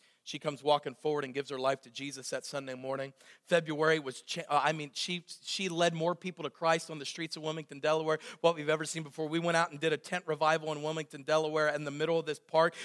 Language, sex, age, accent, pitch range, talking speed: English, male, 40-59, American, 140-165 Hz, 250 wpm